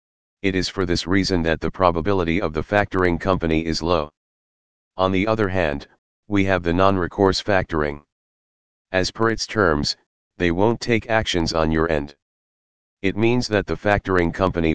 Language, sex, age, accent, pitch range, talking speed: English, male, 40-59, American, 80-95 Hz, 165 wpm